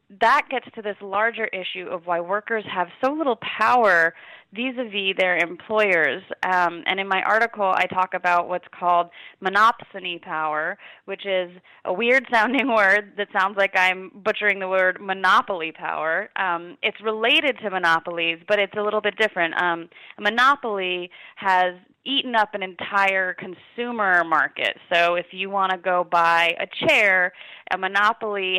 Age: 20-39